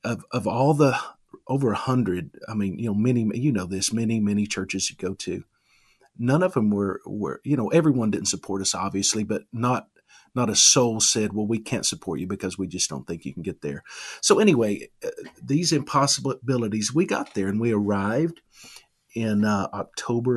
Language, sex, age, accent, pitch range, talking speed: English, male, 50-69, American, 100-130 Hz, 195 wpm